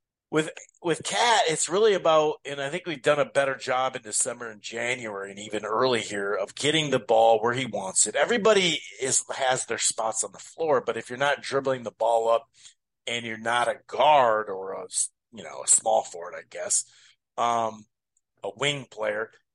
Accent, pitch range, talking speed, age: American, 115-160 Hz, 195 wpm, 40-59